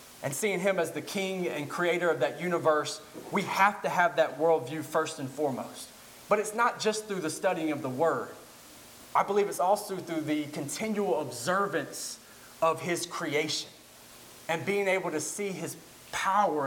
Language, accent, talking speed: English, American, 175 wpm